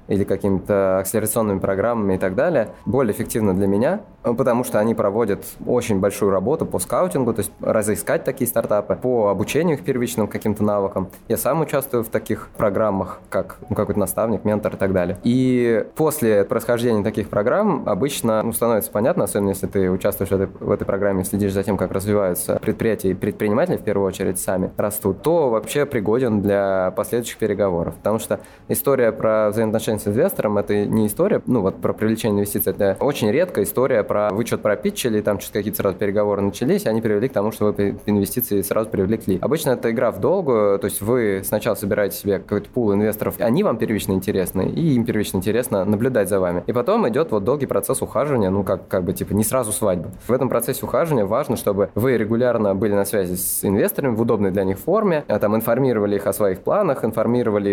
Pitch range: 100-115 Hz